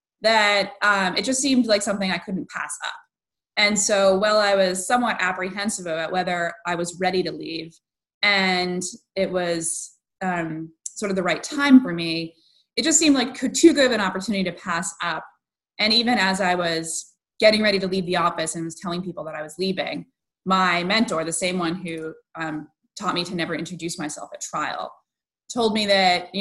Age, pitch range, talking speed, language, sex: 20-39, 165-200 Hz, 195 wpm, English, female